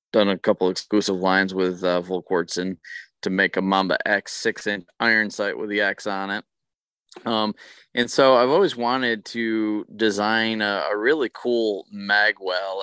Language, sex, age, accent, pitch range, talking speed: English, male, 20-39, American, 100-115 Hz, 170 wpm